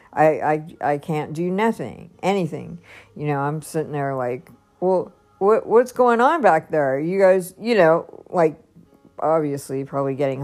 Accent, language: American, English